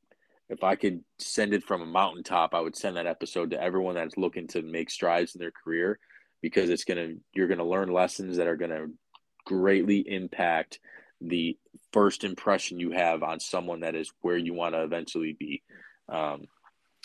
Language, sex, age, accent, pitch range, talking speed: English, male, 20-39, American, 85-100 Hz, 175 wpm